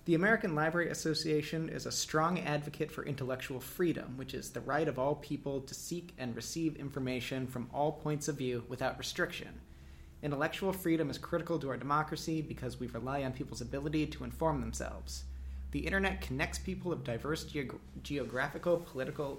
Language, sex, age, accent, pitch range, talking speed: English, male, 30-49, American, 125-150 Hz, 165 wpm